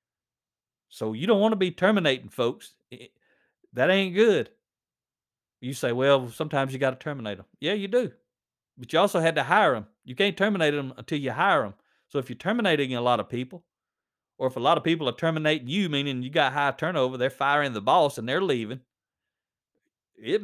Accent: American